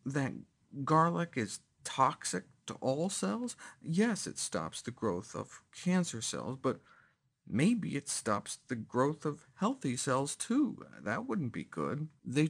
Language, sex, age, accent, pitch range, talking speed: English, male, 50-69, American, 120-170 Hz, 145 wpm